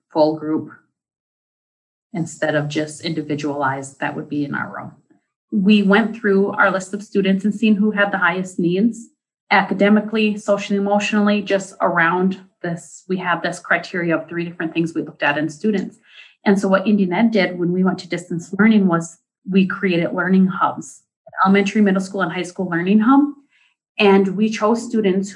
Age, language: 30-49, English